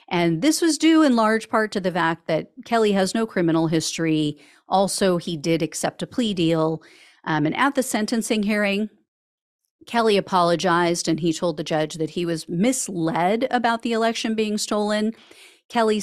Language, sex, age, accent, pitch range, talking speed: English, female, 40-59, American, 170-240 Hz, 170 wpm